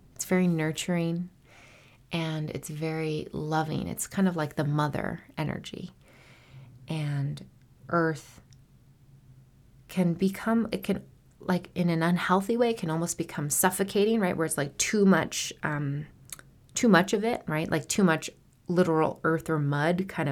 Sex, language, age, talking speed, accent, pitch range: female, English, 30-49, 140 wpm, American, 145-180 Hz